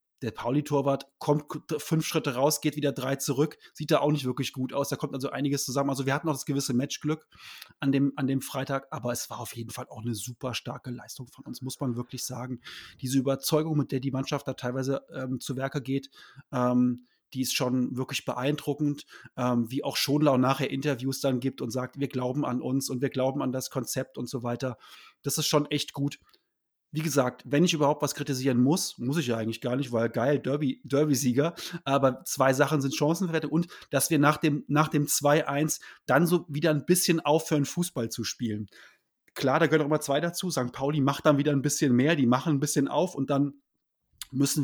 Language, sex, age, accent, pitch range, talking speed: German, male, 30-49, German, 130-150 Hz, 215 wpm